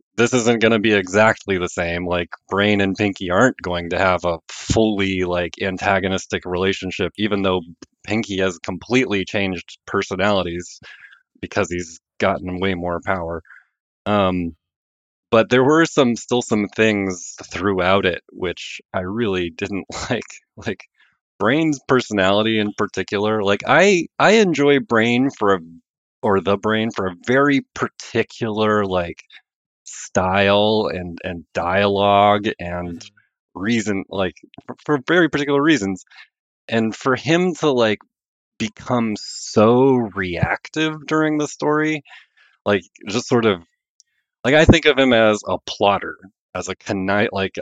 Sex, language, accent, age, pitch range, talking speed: male, English, American, 30-49, 95-115 Hz, 135 wpm